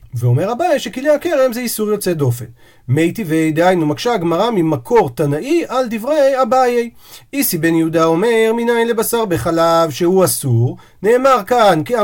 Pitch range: 155-230 Hz